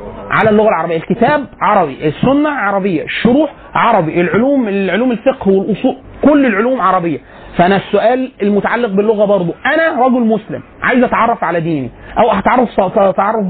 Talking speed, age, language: 140 wpm, 30-49, Arabic